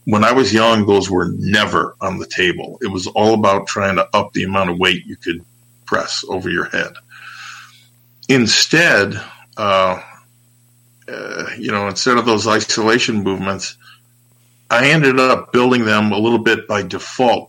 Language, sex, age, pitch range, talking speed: English, male, 50-69, 105-125 Hz, 160 wpm